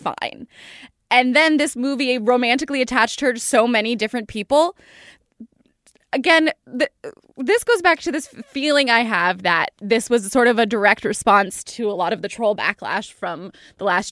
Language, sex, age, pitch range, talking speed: English, female, 10-29, 215-270 Hz, 175 wpm